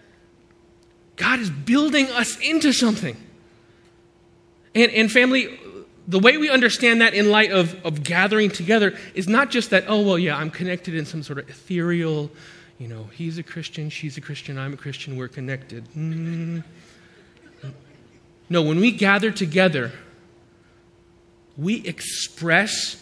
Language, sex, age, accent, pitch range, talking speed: English, male, 30-49, American, 165-235 Hz, 145 wpm